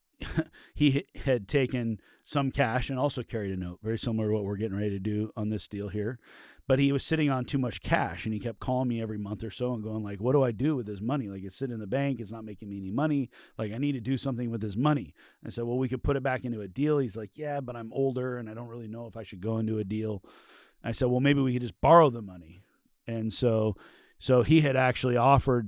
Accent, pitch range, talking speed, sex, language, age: American, 105-135 Hz, 275 wpm, male, English, 30-49